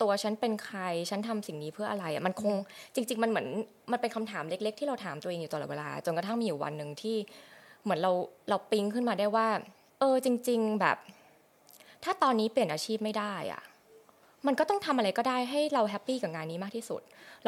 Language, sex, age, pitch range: Thai, female, 20-39, 190-245 Hz